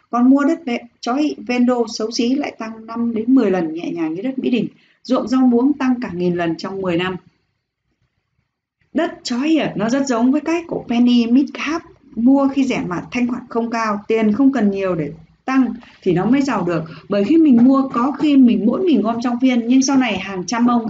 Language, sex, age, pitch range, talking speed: Vietnamese, female, 20-39, 210-275 Hz, 210 wpm